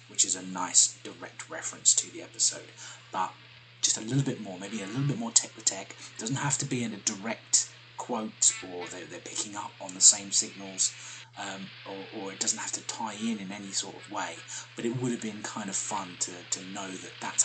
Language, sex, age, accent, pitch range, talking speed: English, male, 20-39, British, 100-120 Hz, 225 wpm